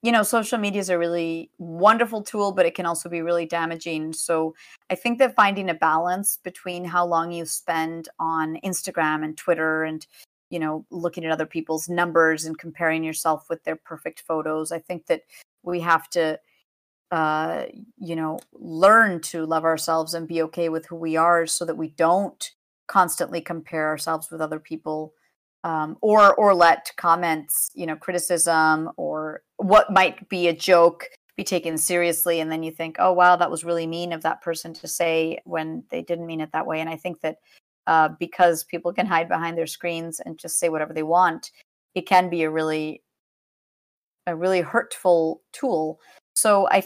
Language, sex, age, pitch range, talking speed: English, female, 30-49, 160-180 Hz, 185 wpm